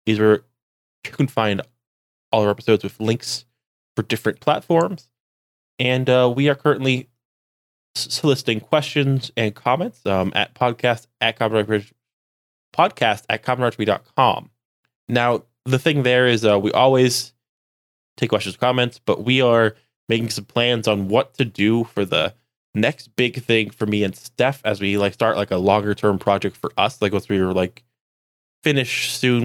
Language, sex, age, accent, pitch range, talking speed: English, male, 20-39, American, 100-125 Hz, 160 wpm